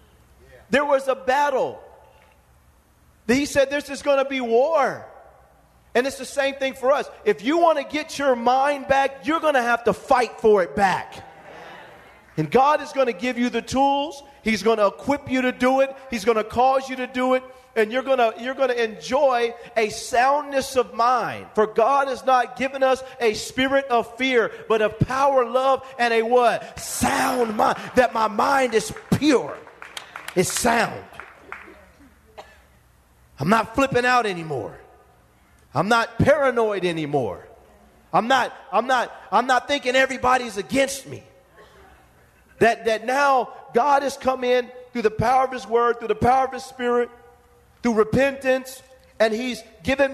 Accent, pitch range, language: American, 225-270 Hz, English